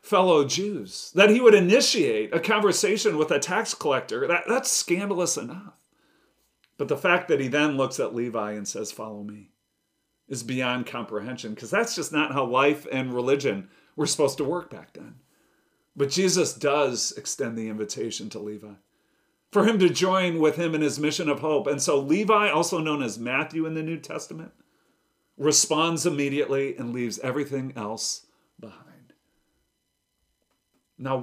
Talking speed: 160 wpm